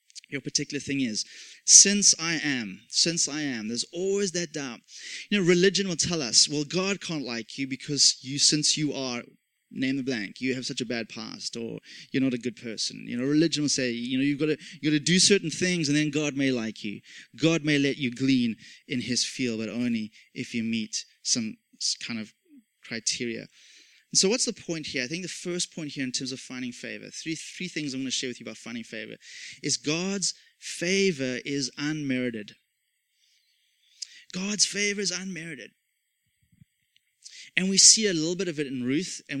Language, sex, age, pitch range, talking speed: English, male, 20-39, 130-175 Hz, 200 wpm